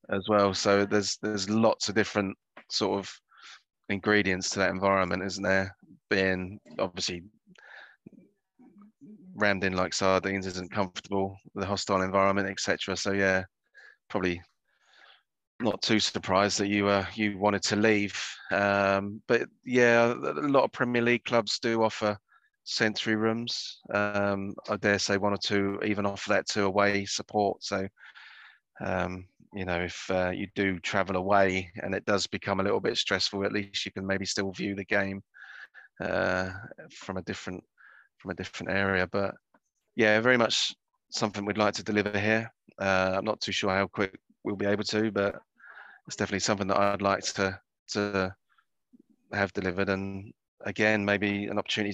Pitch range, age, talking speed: 95-105 Hz, 20-39, 160 wpm